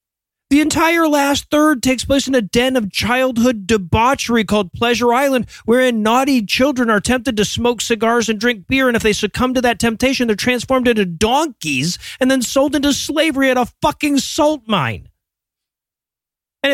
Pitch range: 220-275 Hz